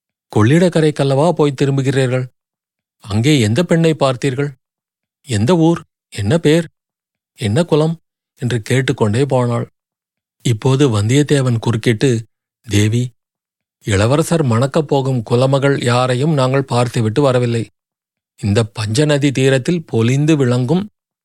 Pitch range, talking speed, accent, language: 120-150 Hz, 95 wpm, native, Tamil